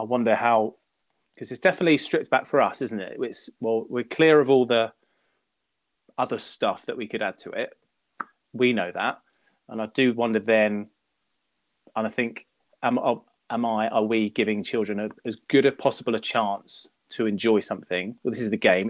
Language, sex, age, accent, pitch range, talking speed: English, male, 20-39, British, 110-120 Hz, 190 wpm